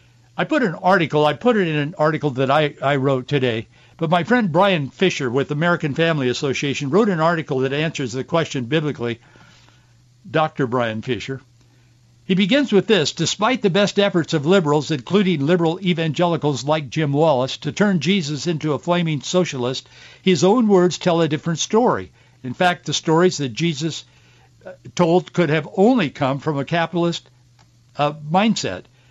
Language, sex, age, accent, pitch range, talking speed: English, male, 60-79, American, 125-175 Hz, 165 wpm